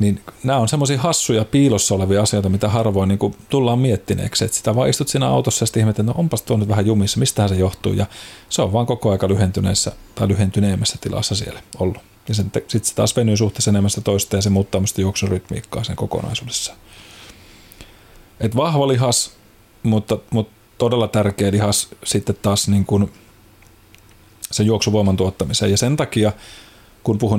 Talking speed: 165 wpm